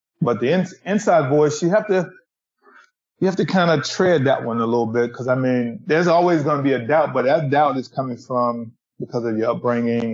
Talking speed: 230 wpm